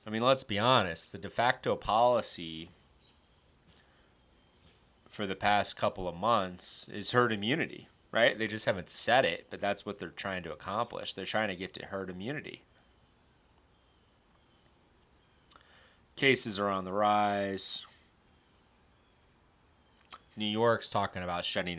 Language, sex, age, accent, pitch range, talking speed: English, male, 30-49, American, 90-115 Hz, 130 wpm